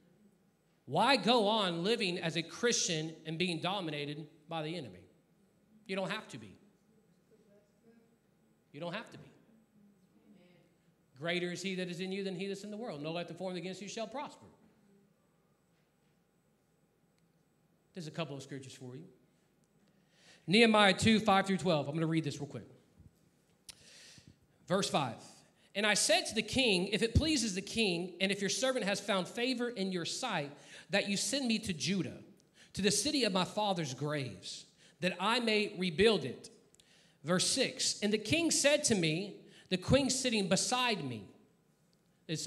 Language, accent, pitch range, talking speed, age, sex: English, American, 155-205 Hz, 170 wpm, 40-59, male